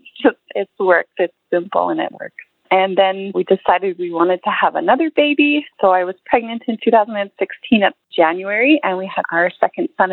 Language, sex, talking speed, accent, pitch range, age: English, female, 190 wpm, American, 175-240 Hz, 30-49